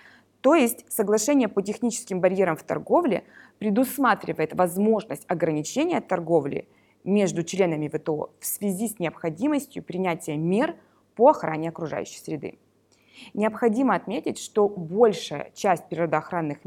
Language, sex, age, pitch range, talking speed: English, female, 20-39, 170-225 Hz, 110 wpm